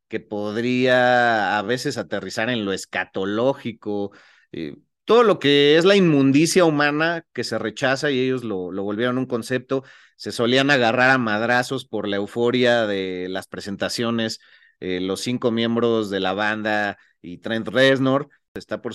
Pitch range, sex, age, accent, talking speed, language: 105-135 Hz, male, 30-49, Mexican, 155 wpm, Spanish